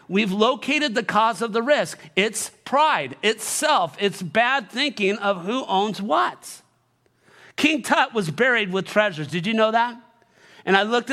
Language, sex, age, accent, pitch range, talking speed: English, male, 40-59, American, 200-305 Hz, 160 wpm